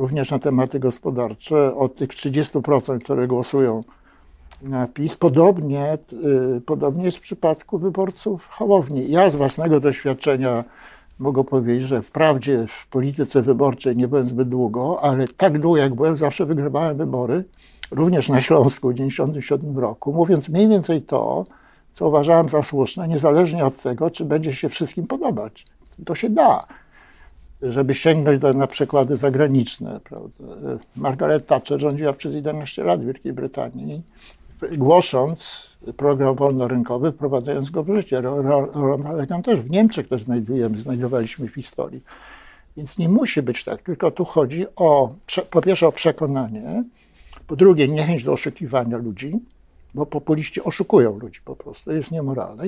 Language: Polish